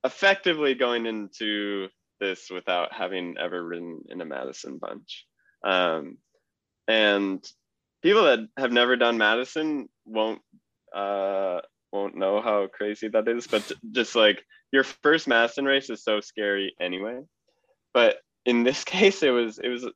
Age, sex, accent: 20-39, male, American